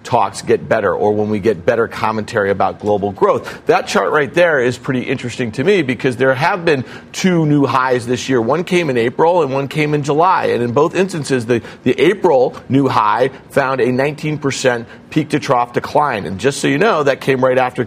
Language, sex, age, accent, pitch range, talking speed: English, male, 40-59, American, 125-150 Hz, 215 wpm